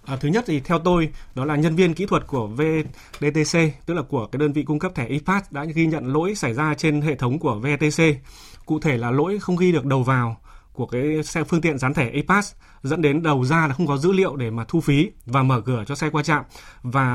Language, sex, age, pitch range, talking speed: Vietnamese, male, 20-39, 130-165 Hz, 255 wpm